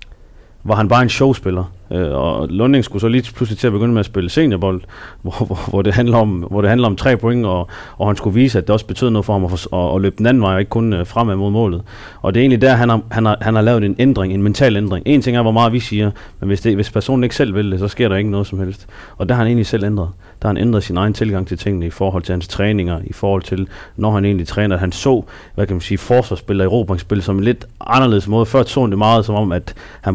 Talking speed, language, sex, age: 285 wpm, Danish, male, 30-49